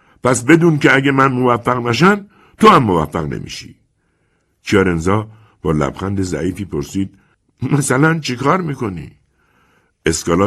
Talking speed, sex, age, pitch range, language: 115 wpm, male, 60-79, 85-130 Hz, Persian